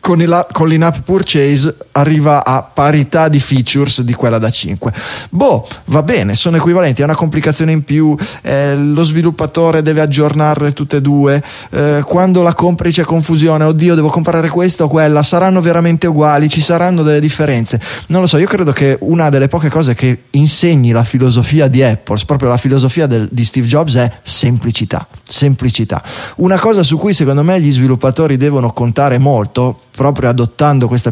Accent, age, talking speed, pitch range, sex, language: native, 20-39, 175 wpm, 120-160 Hz, male, Italian